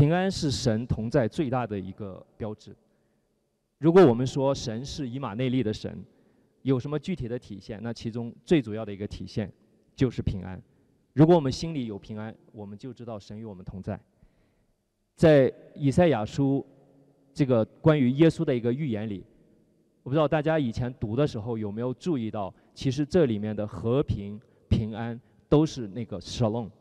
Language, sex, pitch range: Chinese, male, 110-150 Hz